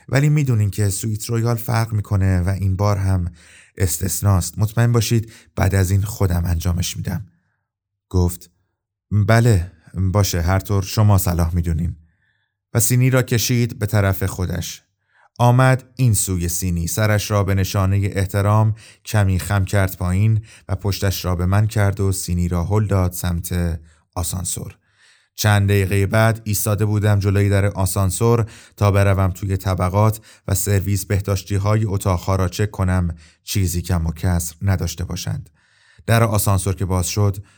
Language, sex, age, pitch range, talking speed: Persian, male, 30-49, 90-105 Hz, 145 wpm